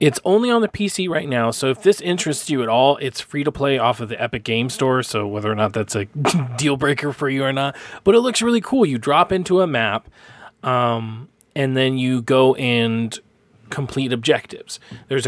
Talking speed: 215 wpm